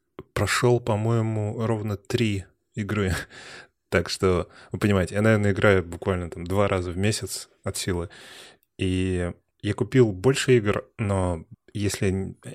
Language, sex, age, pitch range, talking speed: Russian, male, 20-39, 90-105 Hz, 130 wpm